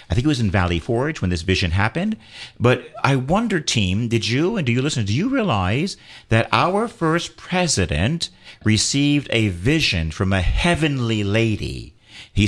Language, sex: English, male